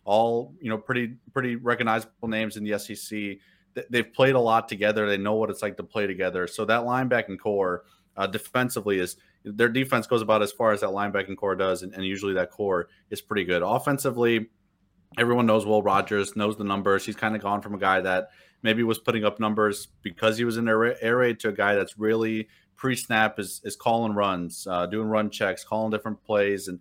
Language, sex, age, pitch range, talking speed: English, male, 30-49, 95-110 Hz, 215 wpm